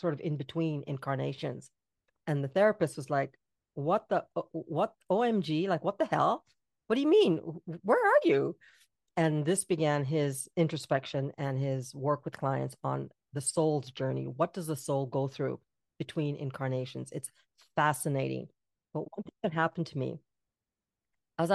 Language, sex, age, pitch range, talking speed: English, female, 40-59, 135-165 Hz, 155 wpm